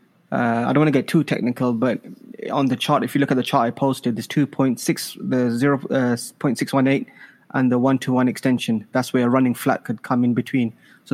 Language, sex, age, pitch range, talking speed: English, male, 20-39, 125-145 Hz, 210 wpm